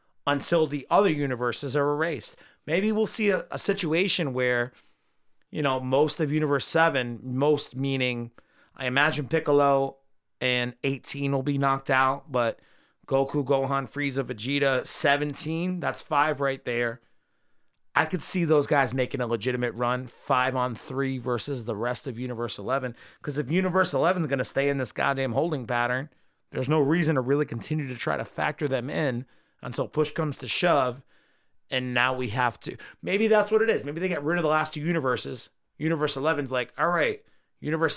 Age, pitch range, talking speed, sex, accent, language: 30-49, 125-150 Hz, 180 wpm, male, American, English